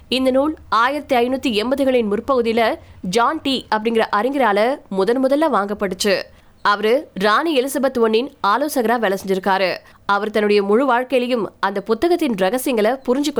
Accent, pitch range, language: native, 215-270 Hz, Tamil